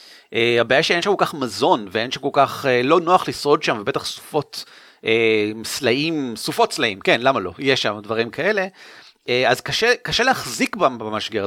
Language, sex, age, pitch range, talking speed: Hebrew, male, 40-59, 130-185 Hz, 180 wpm